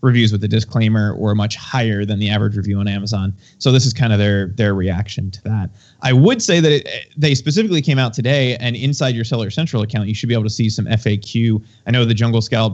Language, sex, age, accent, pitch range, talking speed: English, male, 30-49, American, 105-130 Hz, 240 wpm